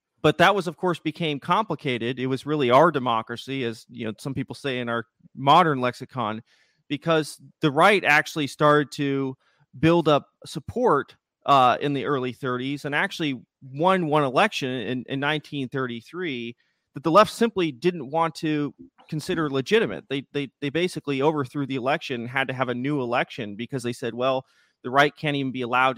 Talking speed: 180 wpm